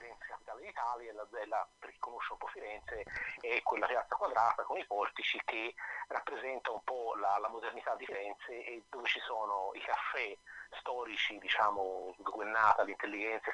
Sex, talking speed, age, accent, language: male, 170 wpm, 30-49, native, Italian